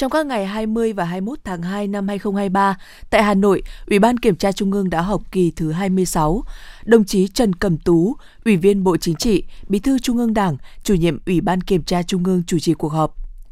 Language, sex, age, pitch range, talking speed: Vietnamese, female, 20-39, 175-215 Hz, 225 wpm